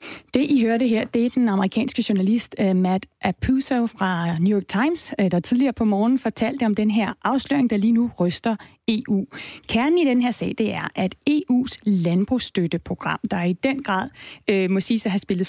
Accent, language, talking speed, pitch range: native, Danish, 200 wpm, 200-265 Hz